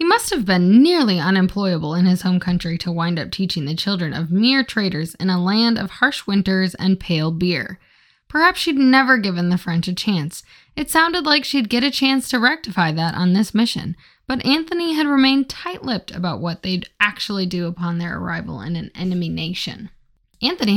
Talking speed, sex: 195 wpm, female